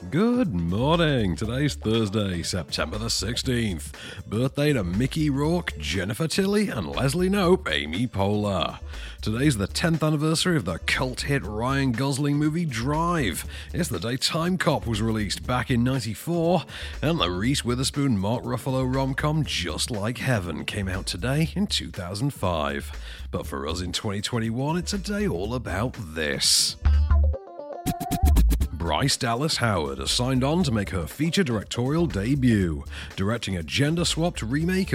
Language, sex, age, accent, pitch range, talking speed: English, male, 40-59, British, 90-150 Hz, 135 wpm